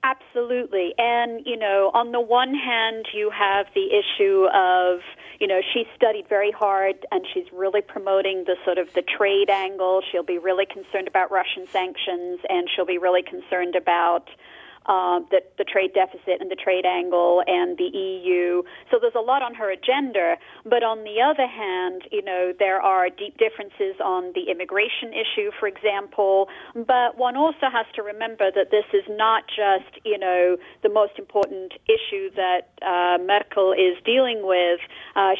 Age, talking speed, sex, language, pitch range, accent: 40-59, 175 wpm, female, English, 185-250 Hz, American